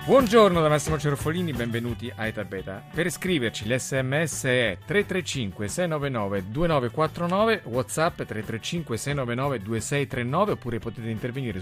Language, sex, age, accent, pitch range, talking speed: Italian, male, 40-59, native, 110-150 Hz, 90 wpm